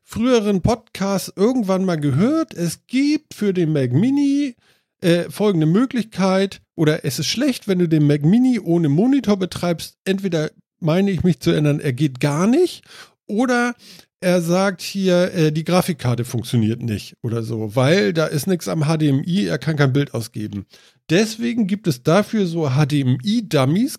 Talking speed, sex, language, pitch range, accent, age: 160 wpm, male, German, 145-205 Hz, German, 50-69